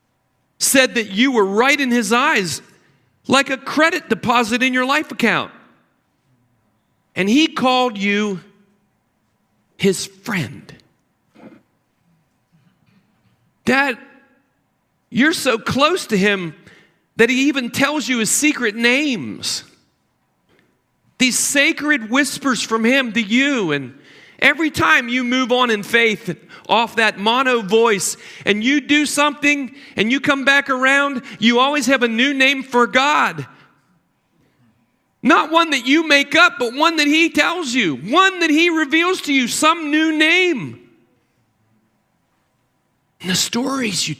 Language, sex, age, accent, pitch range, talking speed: English, male, 40-59, American, 195-280 Hz, 130 wpm